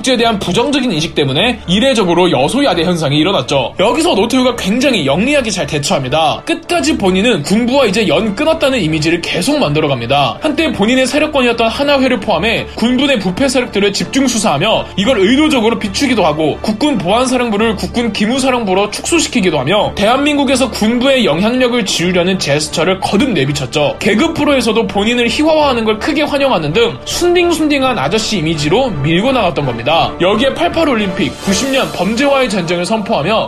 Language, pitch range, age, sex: Korean, 185-270 Hz, 20-39, male